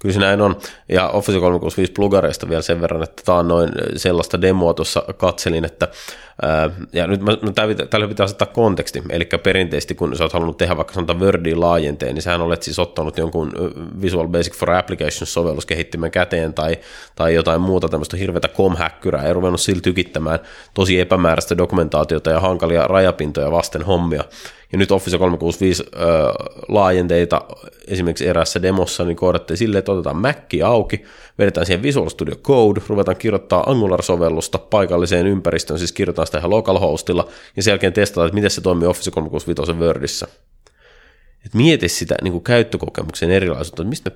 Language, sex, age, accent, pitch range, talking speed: Finnish, male, 20-39, native, 80-95 Hz, 155 wpm